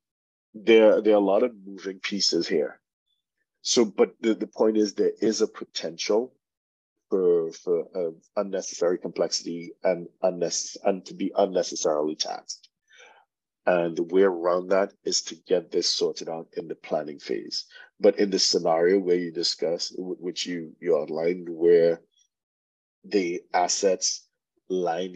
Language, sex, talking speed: English, male, 145 wpm